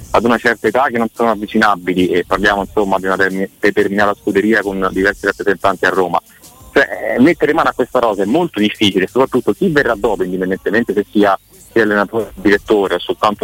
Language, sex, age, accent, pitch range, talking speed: Italian, male, 30-49, native, 100-115 Hz, 180 wpm